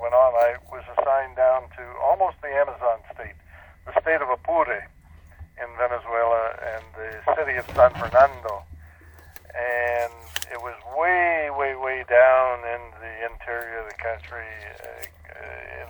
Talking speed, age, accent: 140 wpm, 60-79, American